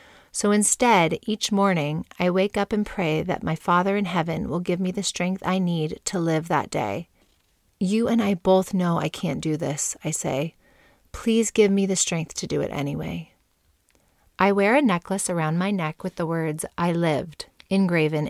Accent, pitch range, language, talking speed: American, 165-200 Hz, English, 190 wpm